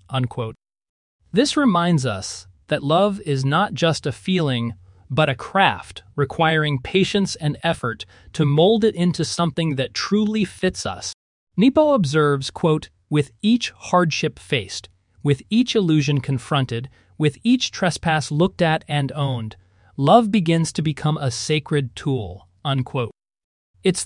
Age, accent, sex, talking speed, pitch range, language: 30-49, American, male, 135 wpm, 115-170 Hz, English